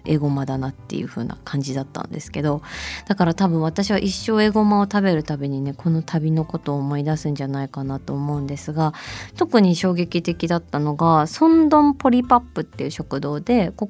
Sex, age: female, 20-39